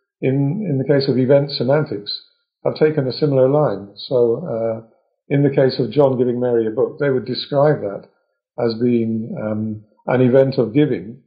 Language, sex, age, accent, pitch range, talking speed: English, male, 50-69, British, 120-160 Hz, 180 wpm